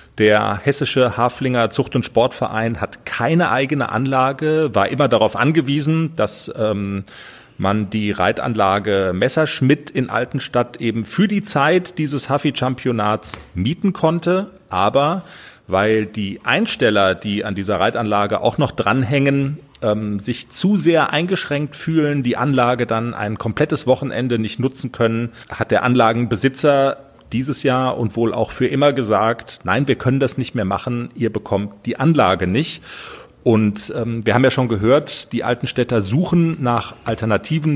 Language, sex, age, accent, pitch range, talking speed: German, male, 40-59, German, 110-145 Hz, 145 wpm